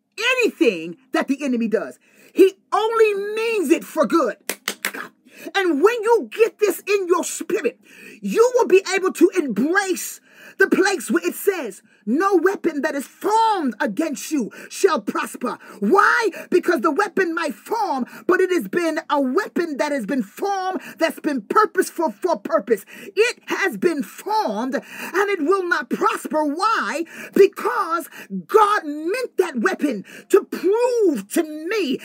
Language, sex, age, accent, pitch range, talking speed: English, male, 30-49, American, 295-370 Hz, 150 wpm